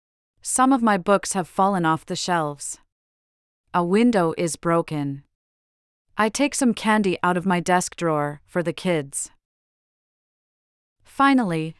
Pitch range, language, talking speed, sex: 155-200 Hz, English, 130 wpm, female